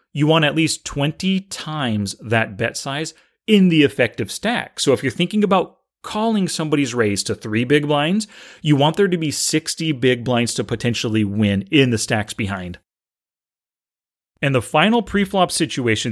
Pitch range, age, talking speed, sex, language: 120-180 Hz, 30-49, 170 wpm, male, English